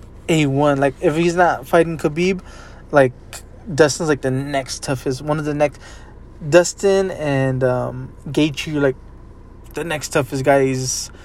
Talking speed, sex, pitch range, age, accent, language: 150 wpm, male, 100-155 Hz, 20-39, American, English